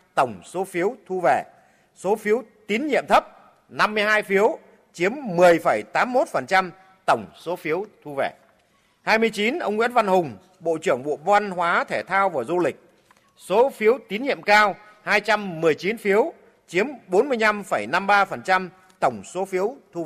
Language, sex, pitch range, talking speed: Vietnamese, male, 185-215 Hz, 175 wpm